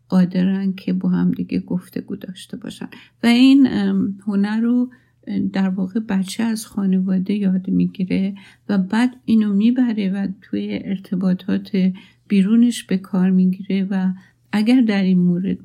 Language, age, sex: Persian, 60-79, female